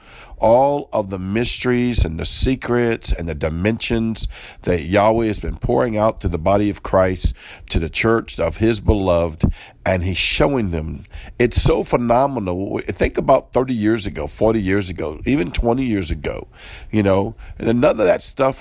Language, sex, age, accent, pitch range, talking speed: English, male, 50-69, American, 95-120 Hz, 170 wpm